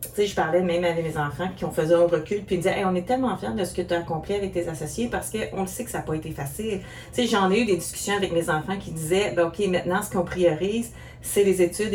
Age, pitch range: 40-59, 170-205 Hz